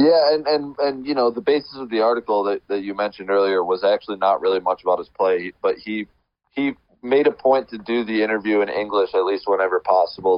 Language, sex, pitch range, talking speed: English, male, 95-135 Hz, 230 wpm